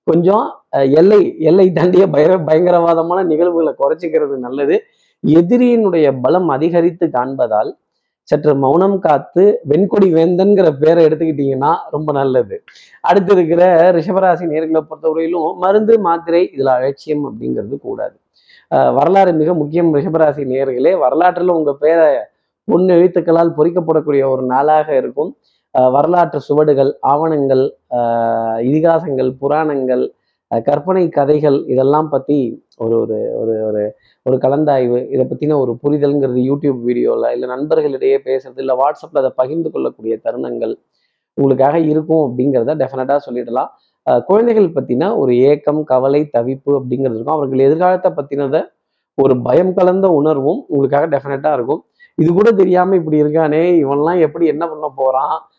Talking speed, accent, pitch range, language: 125 wpm, native, 135-175 Hz, Tamil